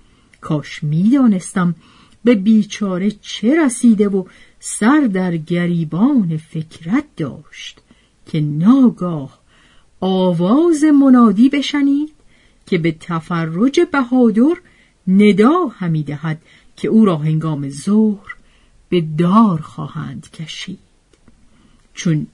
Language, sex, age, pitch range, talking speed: Persian, female, 50-69, 165-240 Hz, 90 wpm